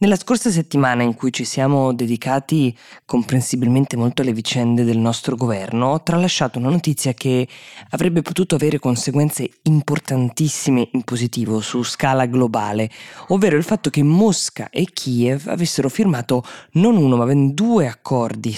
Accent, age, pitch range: native, 20-39, 120-160 Hz